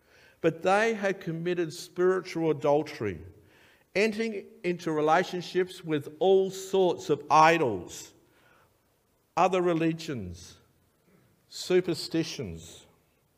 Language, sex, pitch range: English, male, 130-185 Hz